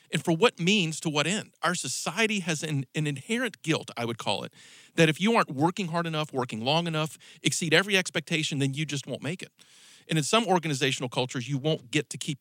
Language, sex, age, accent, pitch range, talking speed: English, male, 40-59, American, 130-170 Hz, 225 wpm